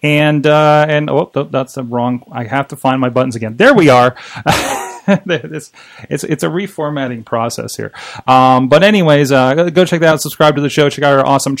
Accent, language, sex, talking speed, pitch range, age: American, English, male, 205 wpm, 125-160 Hz, 30-49